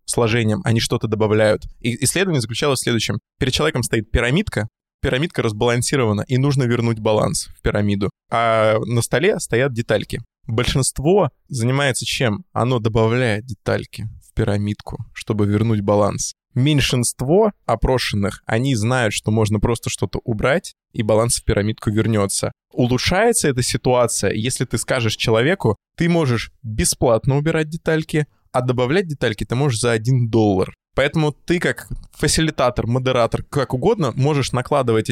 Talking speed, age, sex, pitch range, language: 135 wpm, 20-39, male, 110-135 Hz, Russian